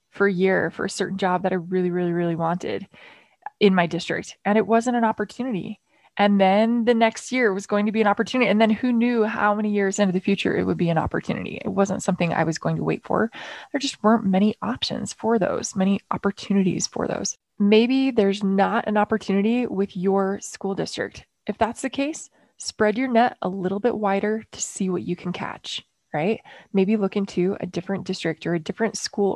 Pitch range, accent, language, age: 190-240 Hz, American, English, 20-39